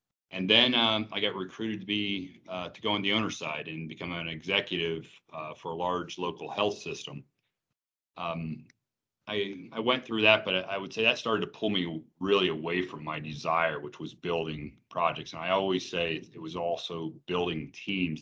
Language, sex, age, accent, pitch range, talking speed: English, male, 40-59, American, 80-100 Hz, 200 wpm